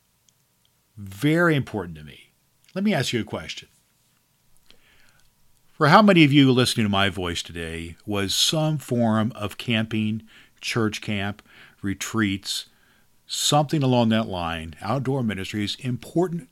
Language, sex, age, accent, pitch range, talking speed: English, male, 50-69, American, 95-115 Hz, 125 wpm